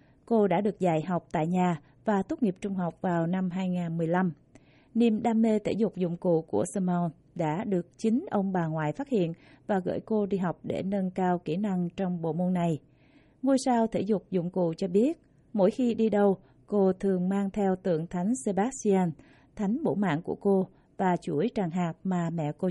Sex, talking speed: female, 205 wpm